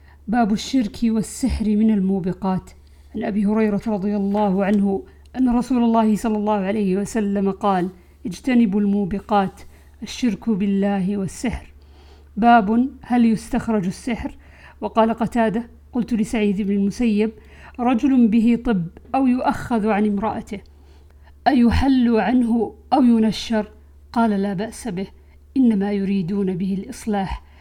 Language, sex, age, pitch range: Arabic, female, 50-69, 200-235 Hz